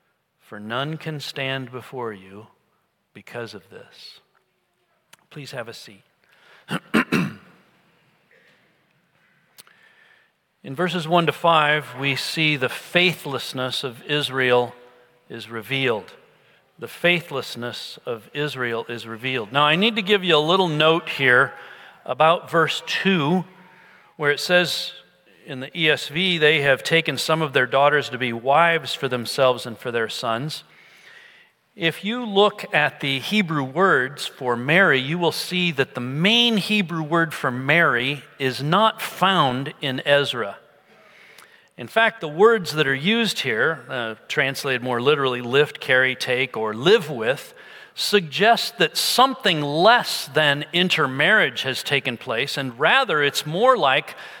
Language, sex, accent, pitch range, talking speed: English, male, American, 130-175 Hz, 135 wpm